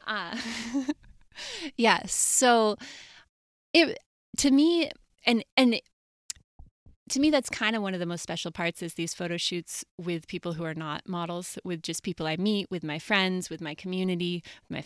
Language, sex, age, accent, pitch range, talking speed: English, female, 20-39, American, 160-195 Hz, 165 wpm